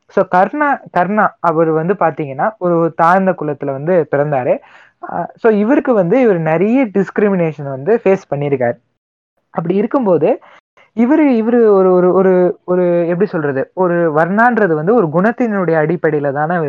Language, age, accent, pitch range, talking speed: Tamil, 20-39, native, 150-210 Hz, 130 wpm